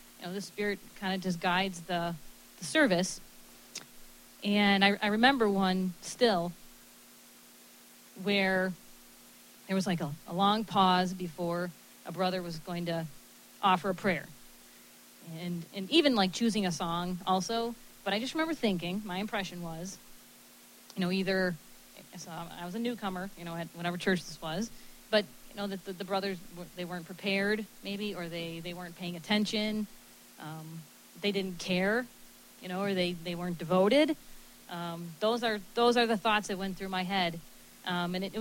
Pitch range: 165-205 Hz